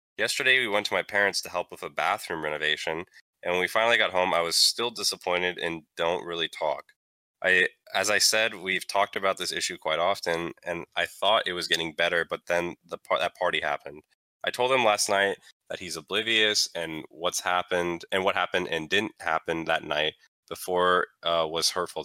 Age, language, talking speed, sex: 10-29, English, 200 wpm, male